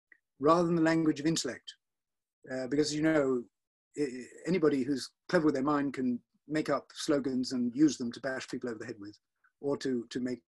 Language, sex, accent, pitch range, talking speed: English, male, British, 125-165 Hz, 200 wpm